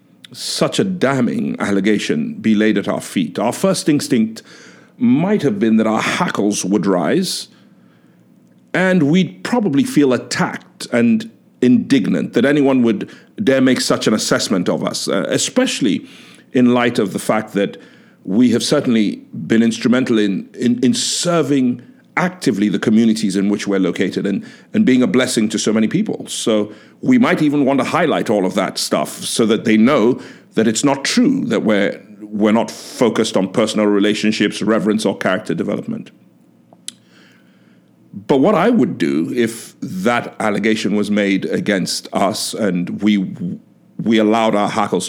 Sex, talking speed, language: male, 155 wpm, English